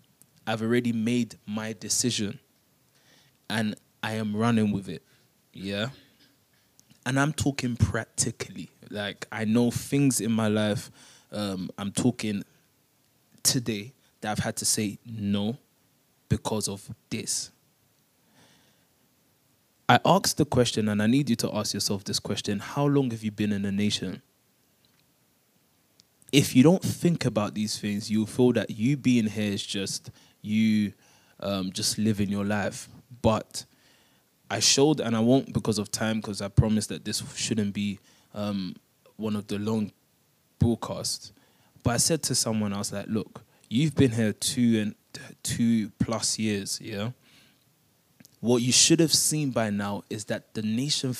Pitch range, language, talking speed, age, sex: 105-125 Hz, English, 150 wpm, 20-39, male